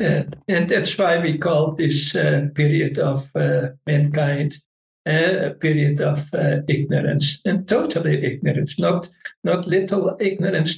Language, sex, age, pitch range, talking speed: English, male, 60-79, 145-175 Hz, 135 wpm